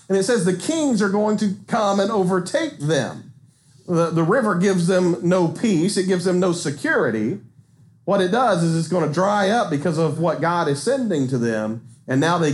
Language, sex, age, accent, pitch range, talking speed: English, male, 40-59, American, 140-190 Hz, 210 wpm